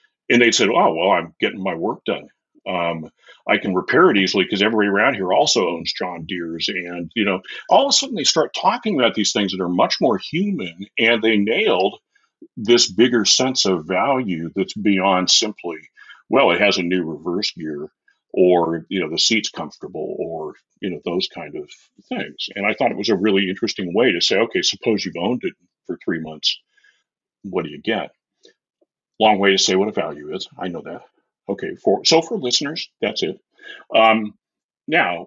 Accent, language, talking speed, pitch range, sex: American, English, 195 wpm, 90-125 Hz, male